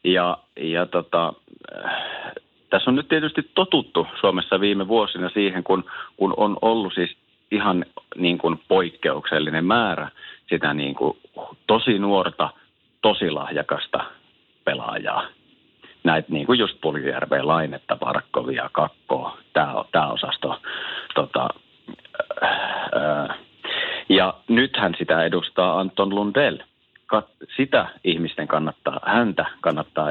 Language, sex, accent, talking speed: Finnish, male, native, 110 wpm